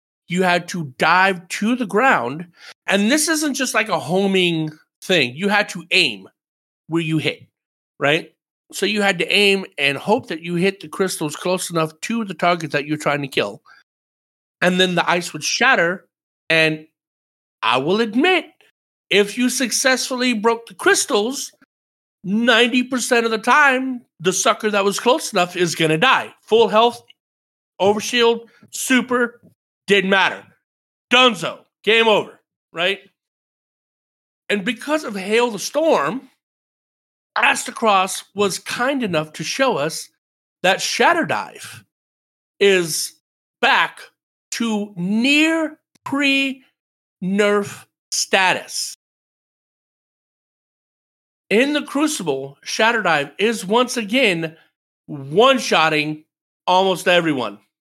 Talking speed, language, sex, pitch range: 120 wpm, English, male, 175-245 Hz